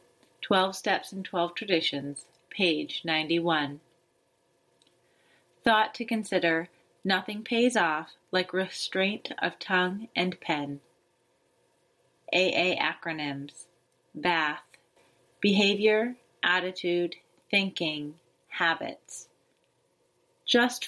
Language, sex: English, female